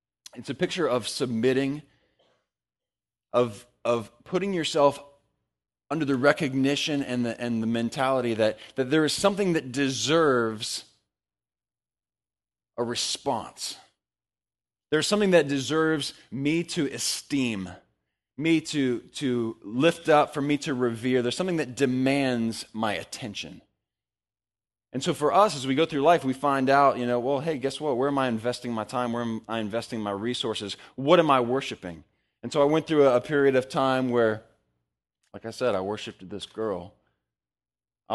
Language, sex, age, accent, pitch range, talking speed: English, male, 20-39, American, 100-140 Hz, 160 wpm